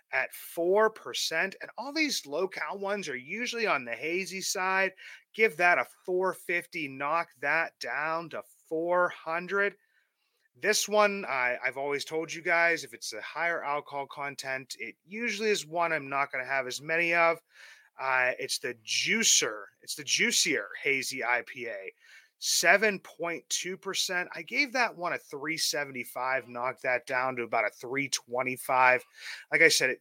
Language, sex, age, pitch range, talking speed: English, male, 30-49, 130-200 Hz, 150 wpm